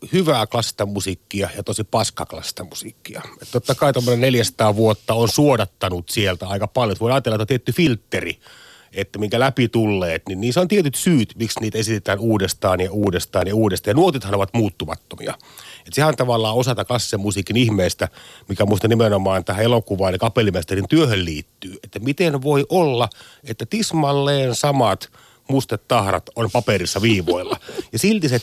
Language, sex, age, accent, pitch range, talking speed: Finnish, male, 30-49, native, 105-145 Hz, 160 wpm